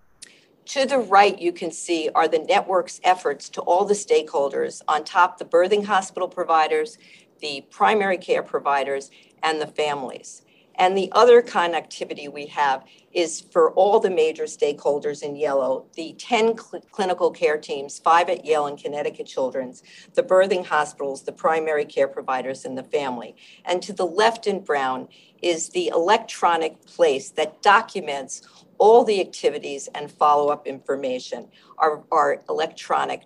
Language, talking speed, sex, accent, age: English, 150 wpm, female, American, 50-69